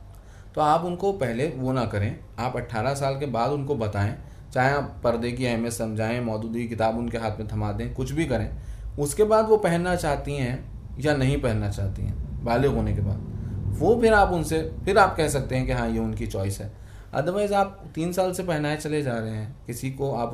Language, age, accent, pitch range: Hindi, 20-39, native, 110-145 Hz